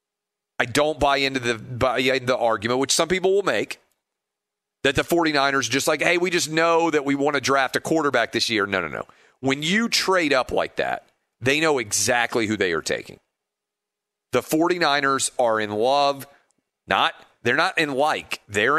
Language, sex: English, male